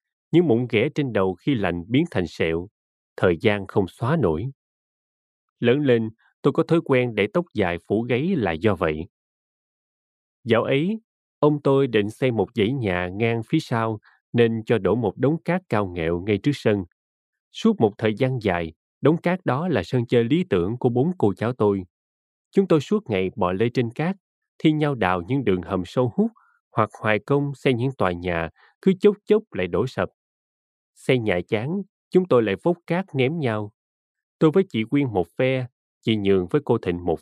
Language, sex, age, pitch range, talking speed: Vietnamese, male, 20-39, 100-150 Hz, 195 wpm